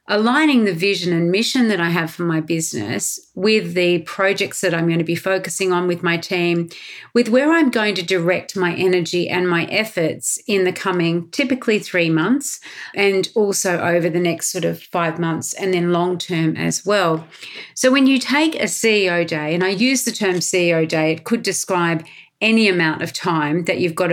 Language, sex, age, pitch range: English, female, 40-59, 170-215 Hz